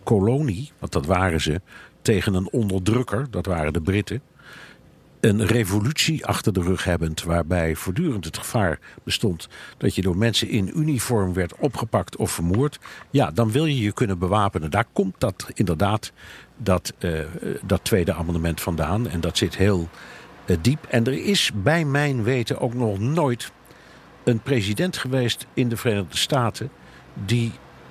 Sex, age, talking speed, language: male, 50-69, 155 wpm, Dutch